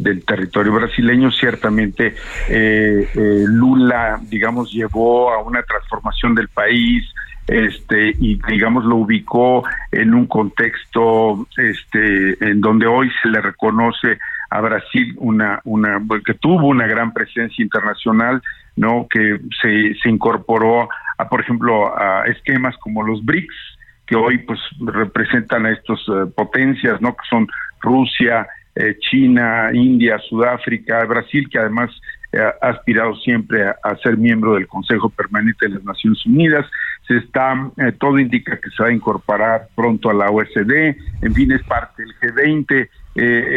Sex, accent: male, Mexican